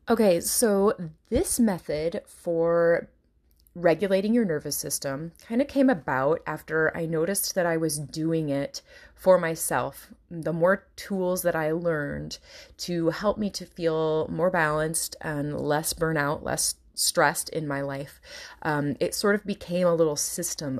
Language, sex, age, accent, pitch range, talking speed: English, female, 30-49, American, 155-195 Hz, 150 wpm